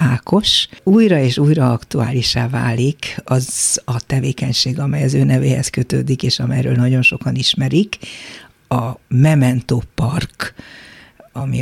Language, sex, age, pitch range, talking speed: Hungarian, female, 50-69, 120-145 Hz, 120 wpm